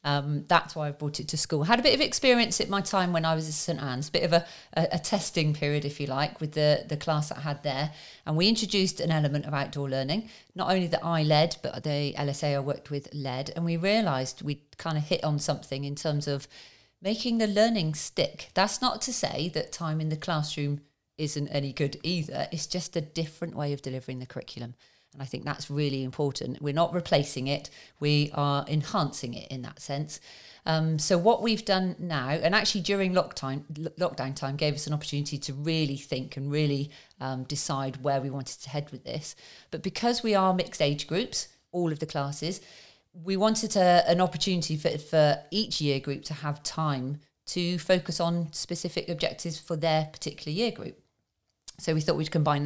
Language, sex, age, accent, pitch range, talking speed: English, female, 40-59, British, 145-175 Hz, 210 wpm